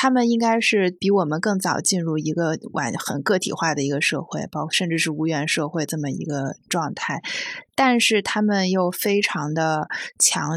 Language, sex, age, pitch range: Chinese, female, 20-39, 160-205 Hz